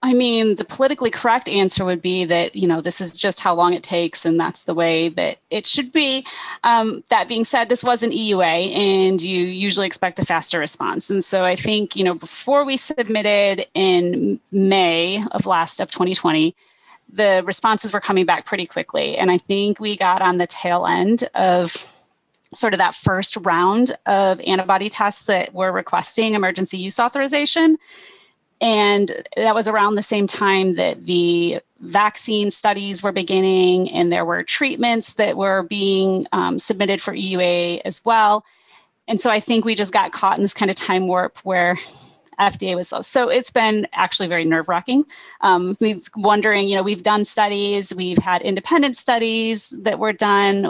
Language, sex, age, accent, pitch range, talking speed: English, female, 30-49, American, 185-225 Hz, 180 wpm